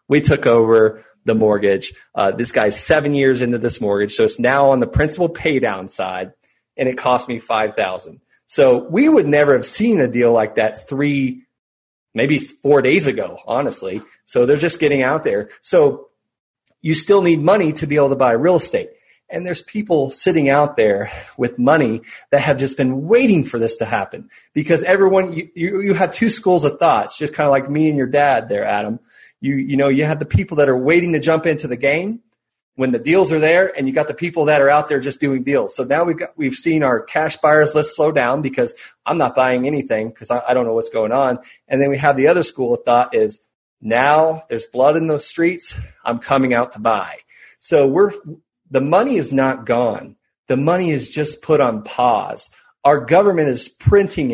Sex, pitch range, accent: male, 125-170 Hz, American